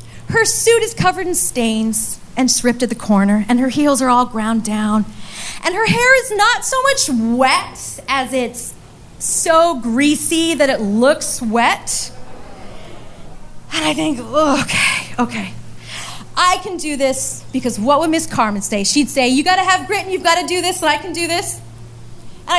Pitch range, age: 225-335 Hz, 30-49